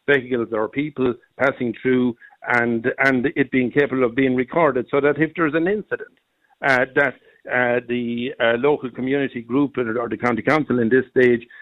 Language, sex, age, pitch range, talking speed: English, male, 60-79, 120-140 Hz, 175 wpm